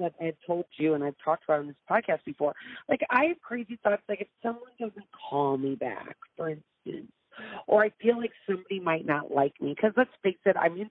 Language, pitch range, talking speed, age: English, 175-235 Hz, 225 wpm, 40-59